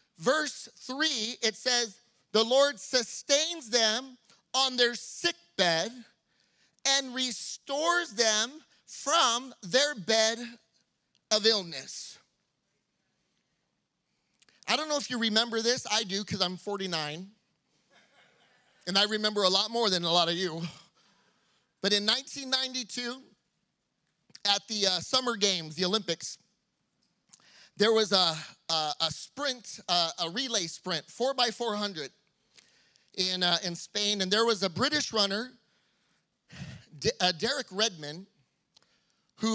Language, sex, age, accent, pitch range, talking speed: English, male, 30-49, American, 185-245 Hz, 125 wpm